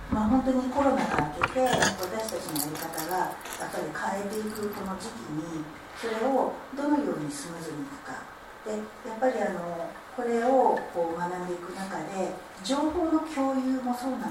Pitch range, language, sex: 175-265 Hz, Japanese, female